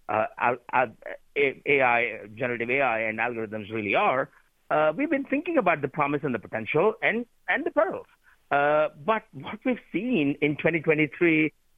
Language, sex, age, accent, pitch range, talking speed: English, male, 50-69, Indian, 115-180 Hz, 155 wpm